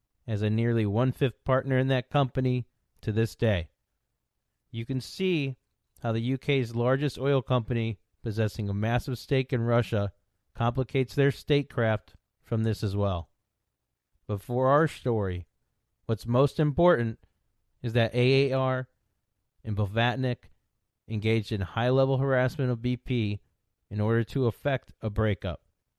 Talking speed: 130 wpm